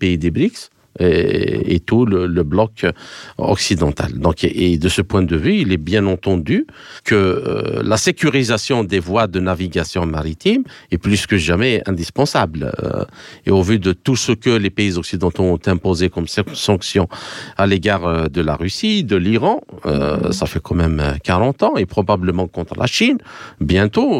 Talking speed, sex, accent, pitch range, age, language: 175 wpm, male, French, 90-115 Hz, 50-69, French